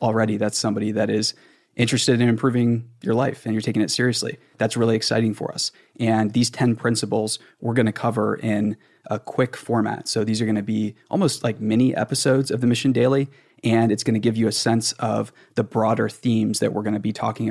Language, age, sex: English, 20-39, male